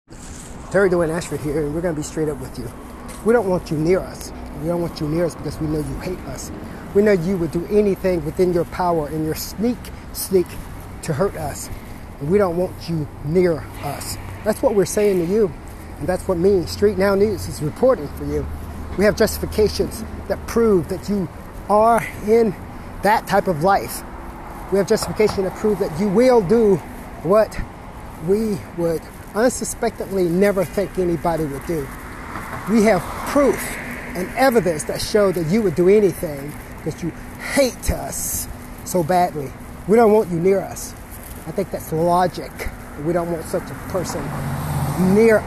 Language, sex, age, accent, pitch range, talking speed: English, male, 30-49, American, 155-205 Hz, 180 wpm